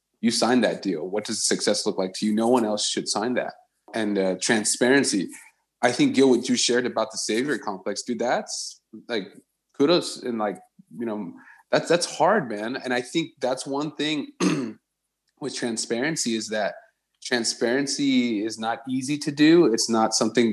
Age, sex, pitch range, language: 30-49, male, 105-125 Hz, English